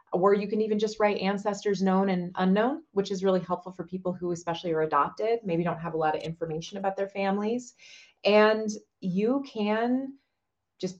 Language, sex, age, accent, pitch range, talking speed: English, female, 30-49, American, 180-235 Hz, 185 wpm